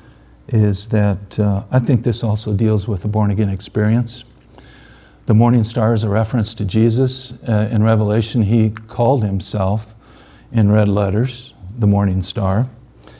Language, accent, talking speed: English, American, 145 wpm